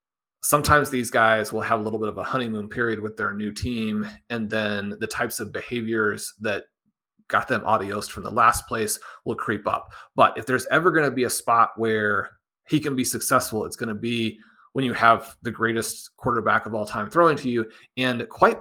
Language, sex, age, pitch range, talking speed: English, male, 30-49, 110-125 Hz, 210 wpm